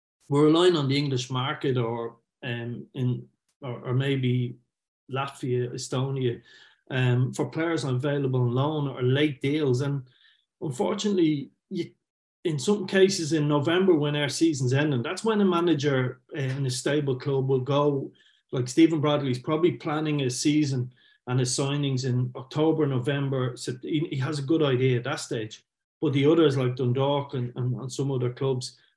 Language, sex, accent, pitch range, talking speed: English, male, Irish, 125-150 Hz, 165 wpm